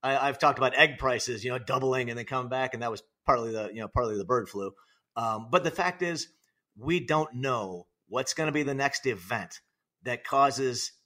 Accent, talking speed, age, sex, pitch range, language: American, 215 wpm, 40-59, male, 125-155 Hz, English